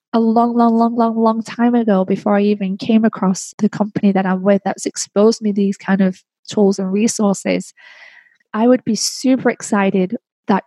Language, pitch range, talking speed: English, 200-225 Hz, 185 wpm